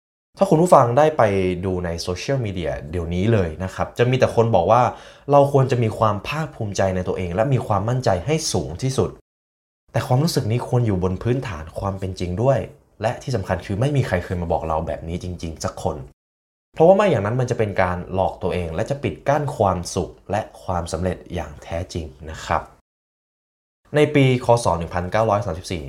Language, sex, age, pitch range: Thai, male, 20-39, 90-125 Hz